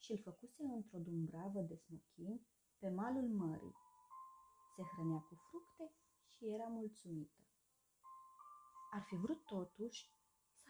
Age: 30-49